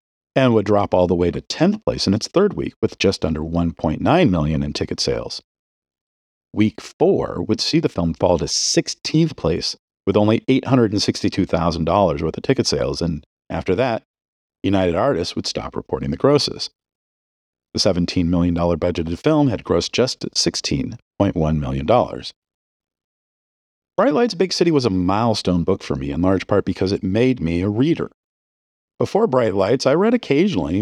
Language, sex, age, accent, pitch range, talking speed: English, male, 50-69, American, 80-110 Hz, 165 wpm